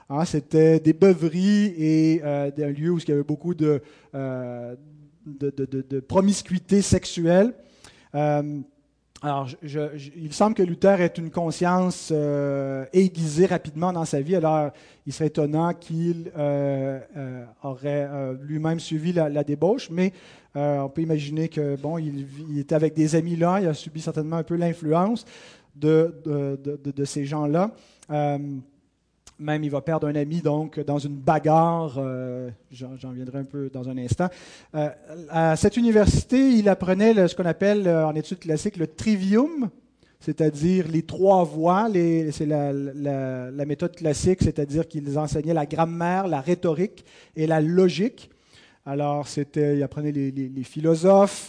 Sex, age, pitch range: male, 30-49, 145-175 Hz